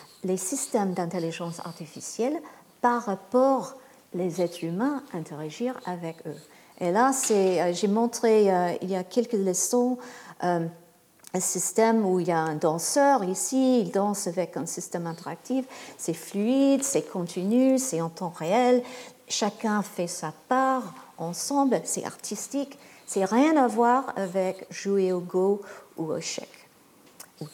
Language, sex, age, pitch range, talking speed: French, female, 50-69, 180-245 Hz, 140 wpm